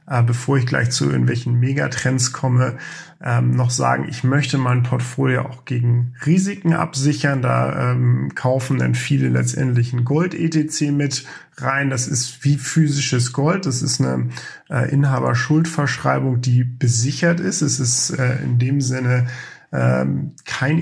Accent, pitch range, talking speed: German, 125-150 Hz, 130 wpm